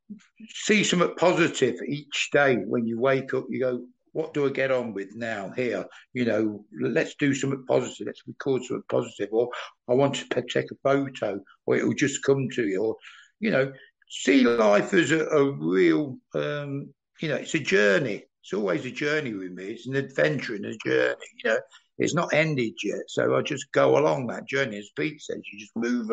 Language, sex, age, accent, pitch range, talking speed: English, male, 60-79, British, 120-170 Hz, 205 wpm